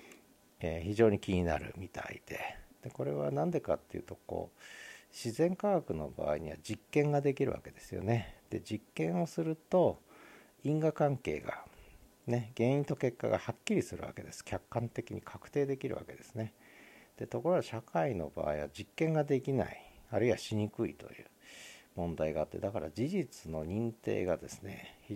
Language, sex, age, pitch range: Japanese, male, 50-69, 90-135 Hz